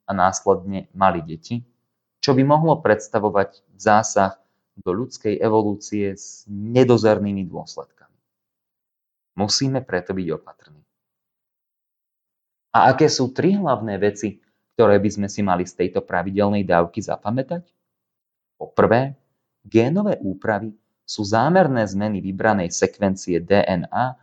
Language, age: Slovak, 30-49